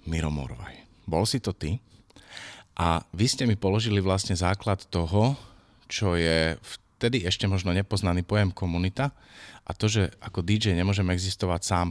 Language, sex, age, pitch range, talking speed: Slovak, male, 30-49, 90-110 Hz, 150 wpm